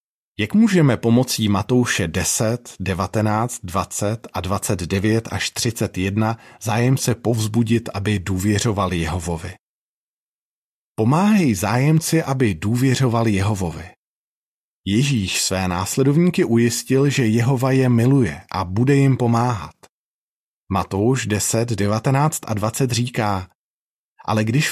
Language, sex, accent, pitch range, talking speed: Czech, male, native, 100-140 Hz, 100 wpm